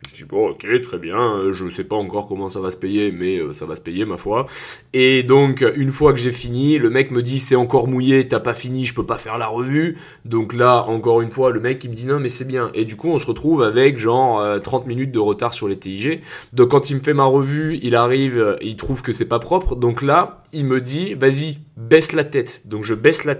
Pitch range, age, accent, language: 120-150 Hz, 20-39, French, French